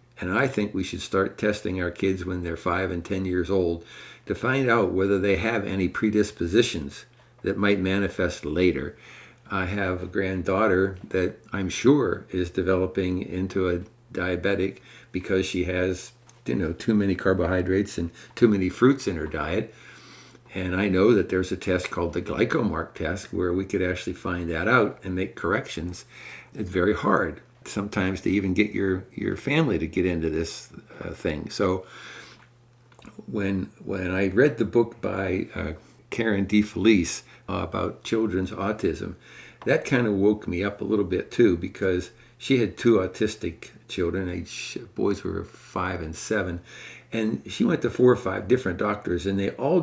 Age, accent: 60-79, American